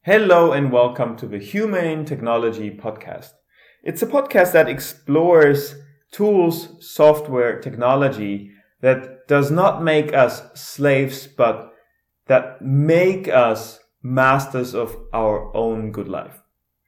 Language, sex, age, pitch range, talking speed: English, male, 30-49, 120-160 Hz, 115 wpm